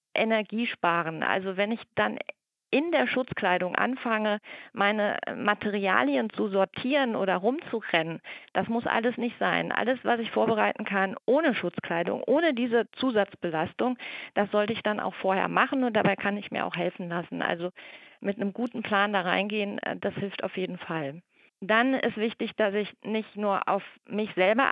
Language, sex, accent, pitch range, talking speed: German, female, German, 200-250 Hz, 165 wpm